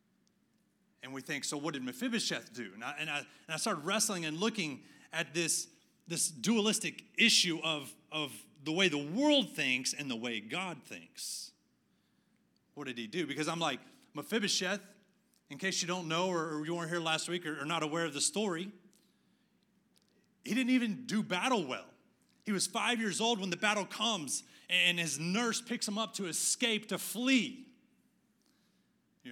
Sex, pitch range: male, 165-220 Hz